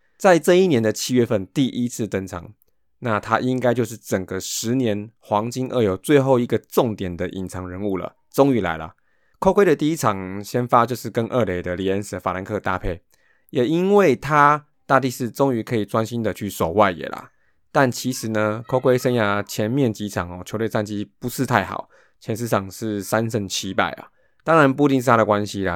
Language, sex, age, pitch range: Chinese, male, 20-39, 100-125 Hz